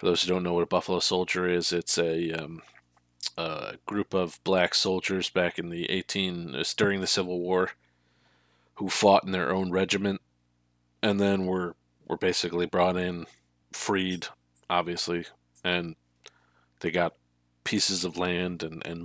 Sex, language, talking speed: male, English, 160 wpm